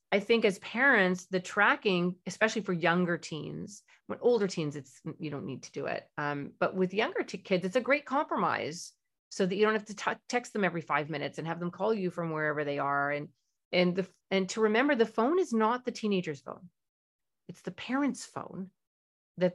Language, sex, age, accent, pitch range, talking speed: English, female, 40-59, American, 175-225 Hz, 210 wpm